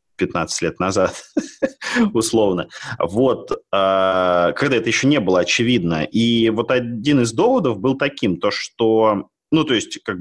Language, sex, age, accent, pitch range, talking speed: Russian, male, 30-49, native, 100-130 Hz, 140 wpm